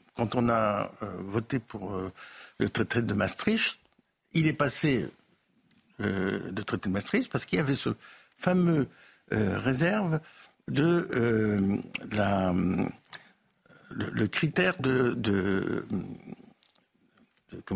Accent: French